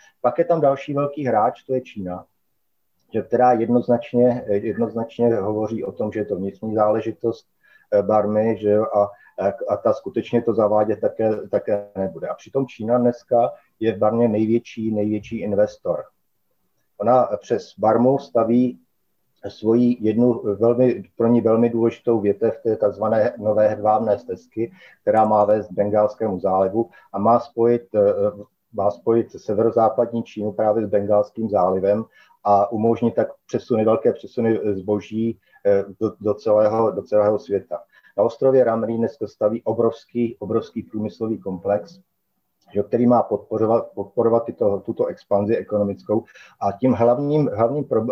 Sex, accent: male, native